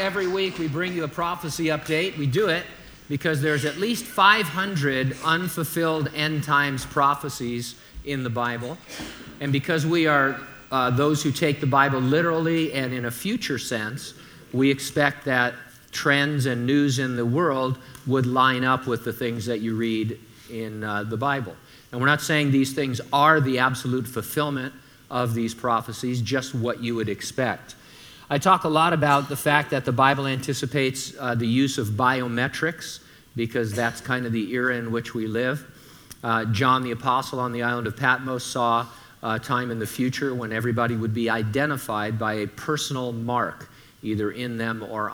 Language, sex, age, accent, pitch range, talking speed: English, male, 50-69, American, 115-140 Hz, 175 wpm